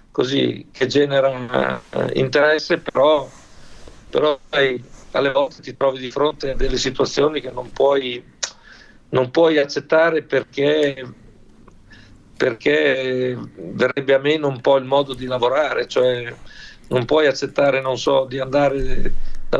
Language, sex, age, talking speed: Italian, male, 50-69, 130 wpm